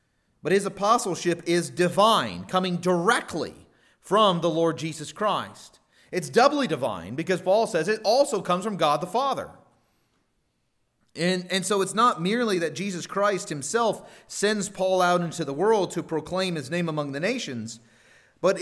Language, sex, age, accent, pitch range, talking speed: English, male, 30-49, American, 155-205 Hz, 160 wpm